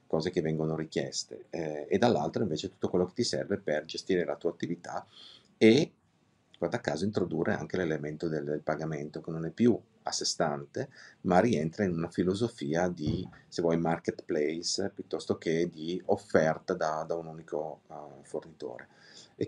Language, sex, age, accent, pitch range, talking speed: Italian, male, 30-49, native, 80-90 Hz, 170 wpm